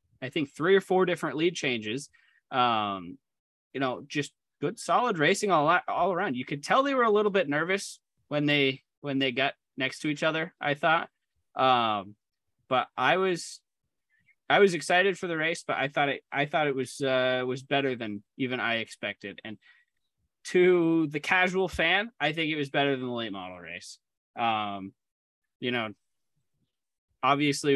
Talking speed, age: 175 wpm, 20-39